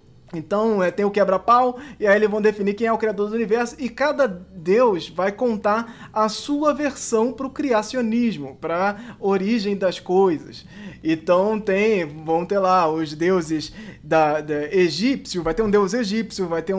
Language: Portuguese